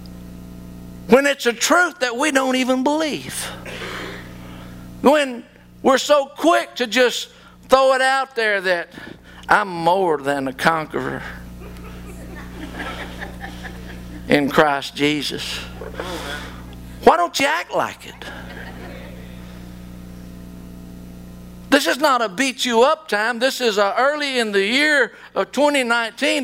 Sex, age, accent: male, 50-69, American